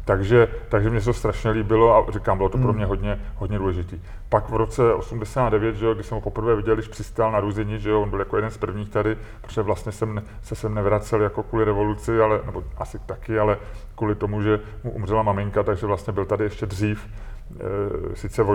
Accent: native